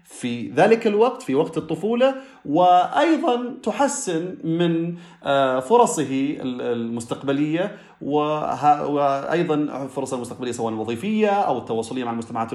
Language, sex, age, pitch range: Arabic, male, 30-49, 115-165 Hz